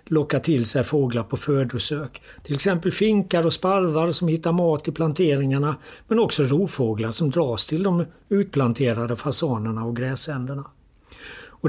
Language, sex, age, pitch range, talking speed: Swedish, male, 60-79, 125-165 Hz, 145 wpm